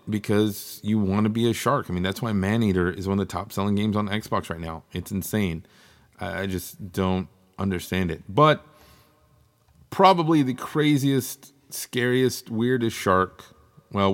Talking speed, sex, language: 155 wpm, male, English